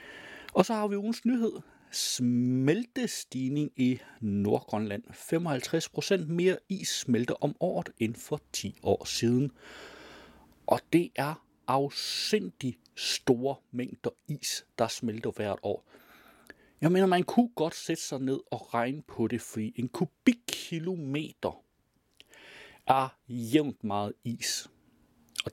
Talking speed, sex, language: 120 wpm, male, Danish